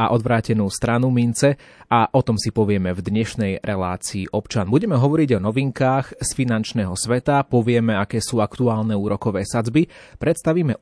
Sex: male